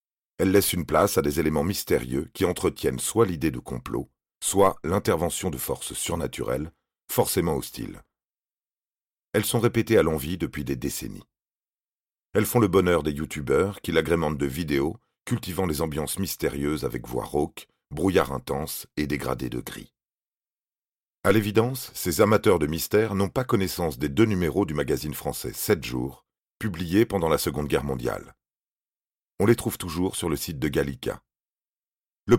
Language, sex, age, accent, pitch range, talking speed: French, male, 40-59, French, 80-110 Hz, 160 wpm